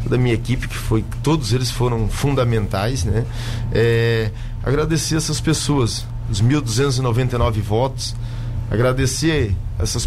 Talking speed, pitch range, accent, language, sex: 115 wpm, 115-135 Hz, Brazilian, Portuguese, male